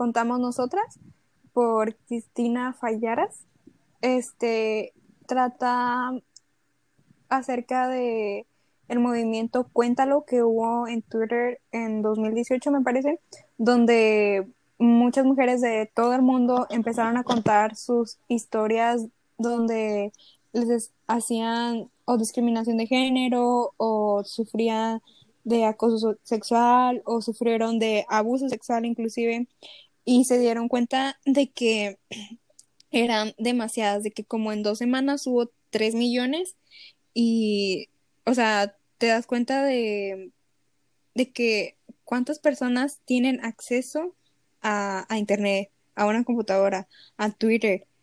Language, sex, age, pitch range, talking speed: Spanish, female, 10-29, 220-250 Hz, 110 wpm